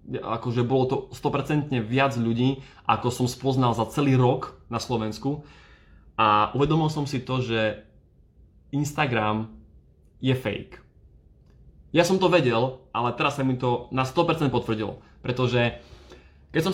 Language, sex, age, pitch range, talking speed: Slovak, male, 20-39, 115-135 Hz, 135 wpm